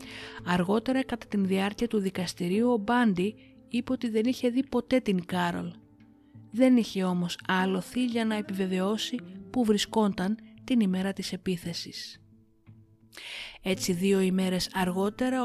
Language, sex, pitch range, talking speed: Greek, female, 180-240 Hz, 130 wpm